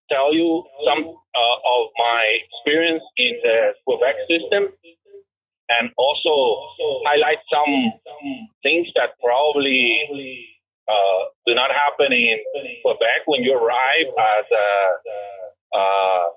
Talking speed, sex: 110 wpm, male